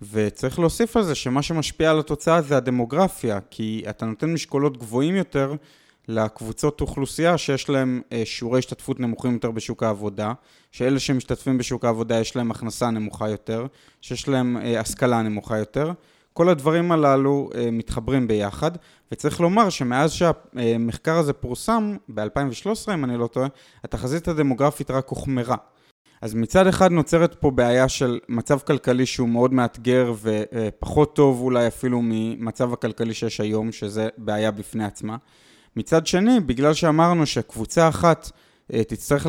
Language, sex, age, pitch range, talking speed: Hebrew, male, 20-39, 115-150 Hz, 140 wpm